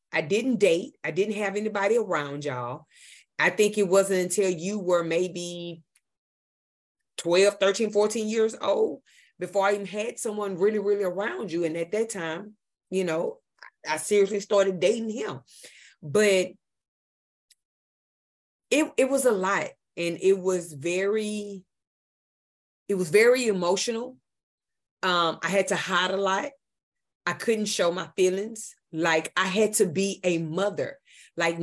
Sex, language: female, English